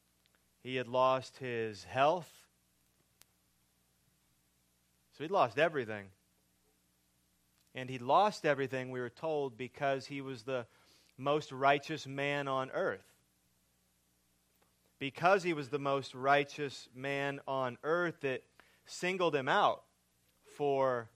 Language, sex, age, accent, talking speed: English, male, 30-49, American, 110 wpm